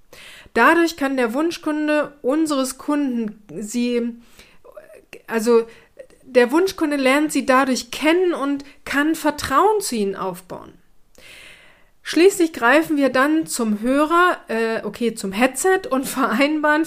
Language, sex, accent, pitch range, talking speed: German, female, German, 240-305 Hz, 110 wpm